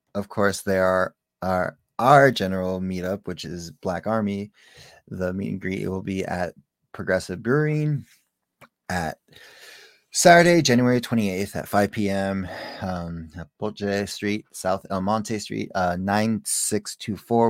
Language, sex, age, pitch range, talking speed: English, male, 20-39, 95-110 Hz, 135 wpm